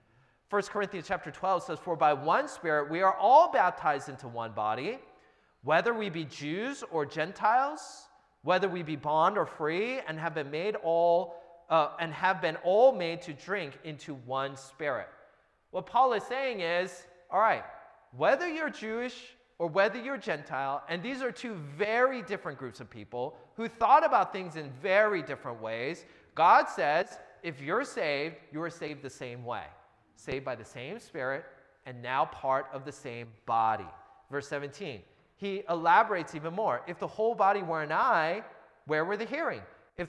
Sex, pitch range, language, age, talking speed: male, 145-210 Hz, English, 30-49, 170 wpm